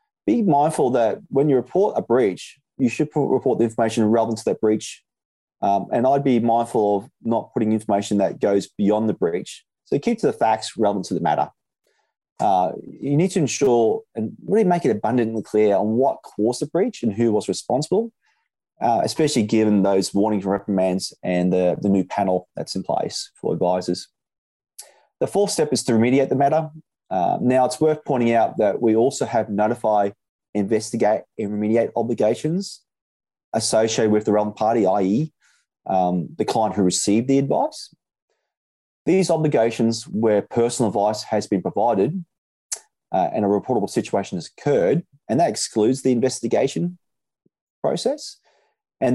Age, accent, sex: 30-49, Australian, male